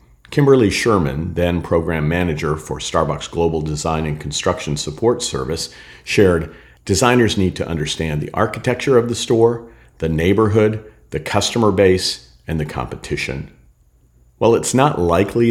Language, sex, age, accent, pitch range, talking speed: English, male, 50-69, American, 75-105 Hz, 135 wpm